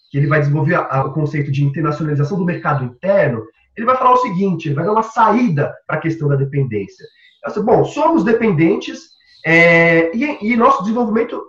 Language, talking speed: Portuguese, 170 wpm